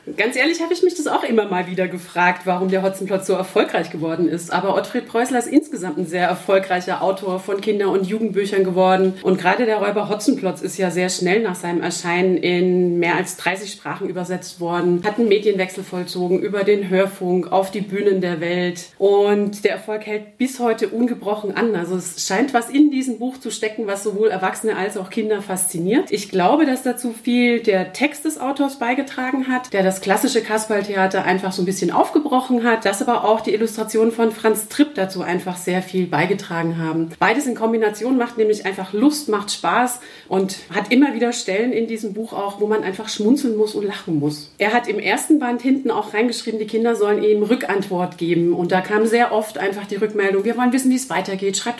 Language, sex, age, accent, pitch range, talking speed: German, female, 30-49, German, 185-230 Hz, 205 wpm